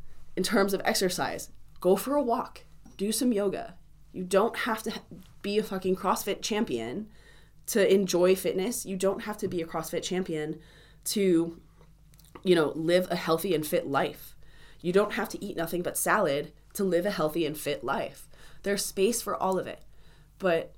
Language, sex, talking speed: English, female, 180 wpm